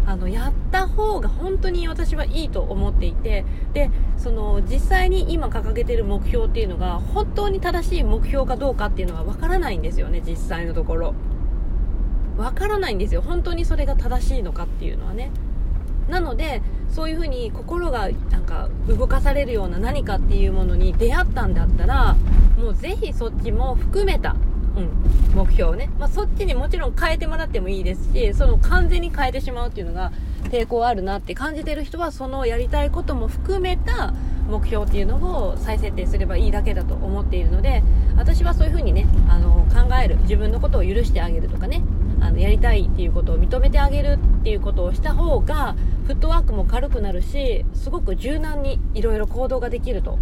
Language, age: Japanese, 20-39